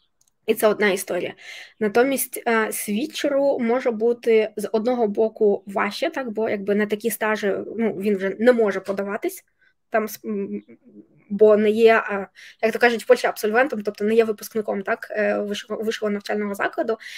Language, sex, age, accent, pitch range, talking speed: Ukrainian, female, 20-39, native, 210-245 Hz, 145 wpm